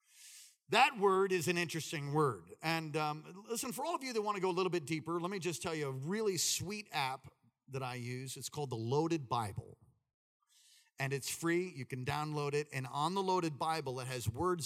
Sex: male